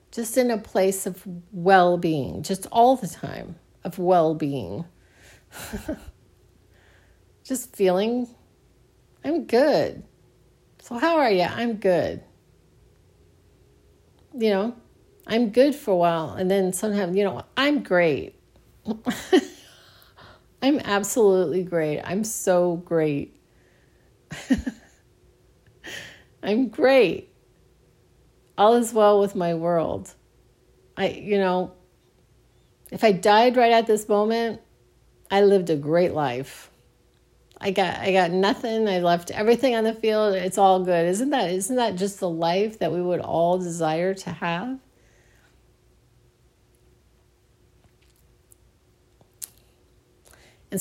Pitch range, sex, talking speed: 175-225 Hz, female, 115 wpm